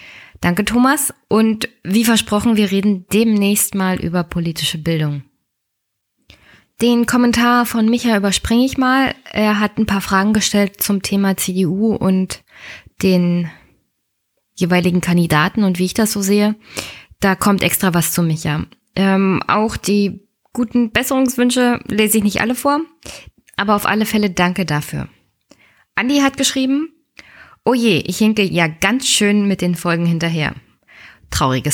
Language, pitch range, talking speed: German, 175-220 Hz, 140 wpm